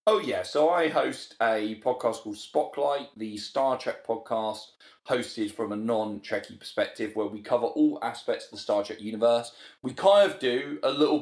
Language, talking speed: English, 185 wpm